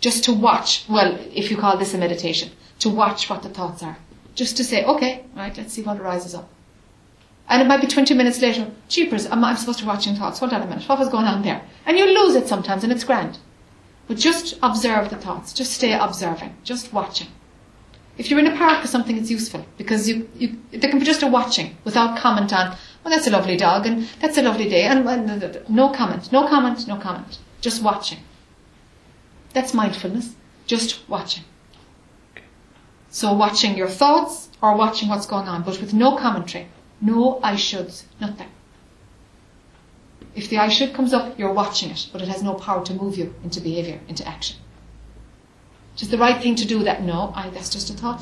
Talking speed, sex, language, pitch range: 200 wpm, female, English, 195-245 Hz